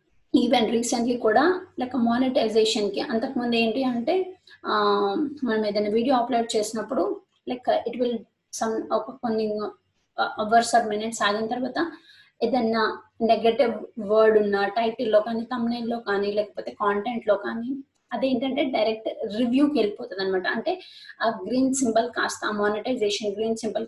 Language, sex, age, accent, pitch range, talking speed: Telugu, female, 20-39, native, 220-275 Hz, 125 wpm